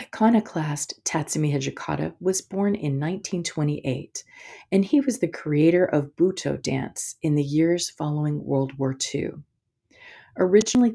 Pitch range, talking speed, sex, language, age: 140-175 Hz, 125 wpm, female, English, 40-59